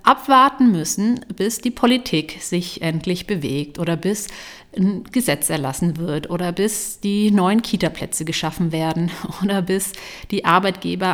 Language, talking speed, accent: German, 135 wpm, German